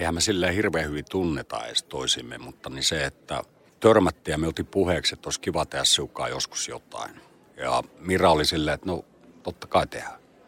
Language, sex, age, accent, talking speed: Finnish, male, 50-69, native, 185 wpm